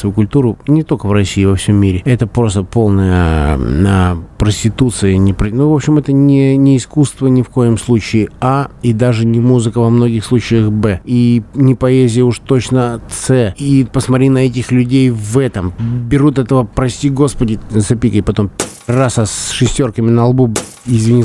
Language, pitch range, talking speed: Russian, 105-130 Hz, 170 wpm